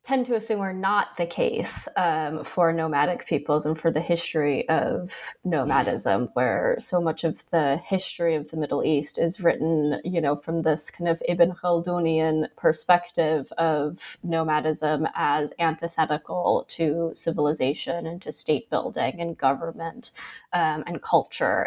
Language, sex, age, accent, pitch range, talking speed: English, female, 20-39, American, 155-175 Hz, 145 wpm